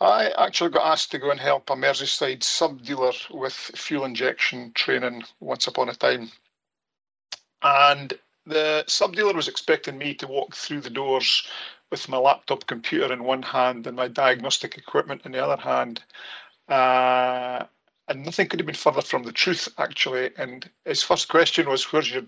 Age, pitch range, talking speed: 50-69, 130-165 Hz, 170 wpm